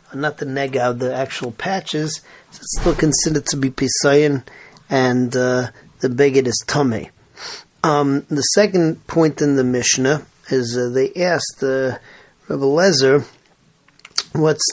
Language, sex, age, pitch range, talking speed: English, male, 40-59, 130-155 Hz, 135 wpm